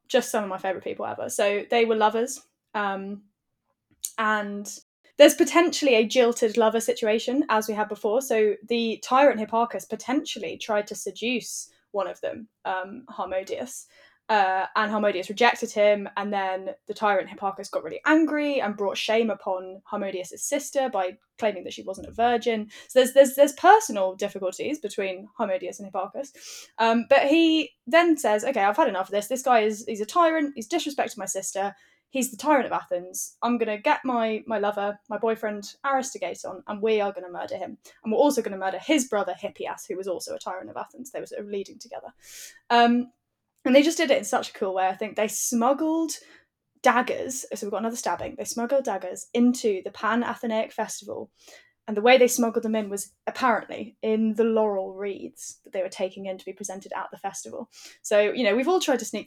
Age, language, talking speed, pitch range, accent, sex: 10-29, English, 200 wpm, 200-260 Hz, British, female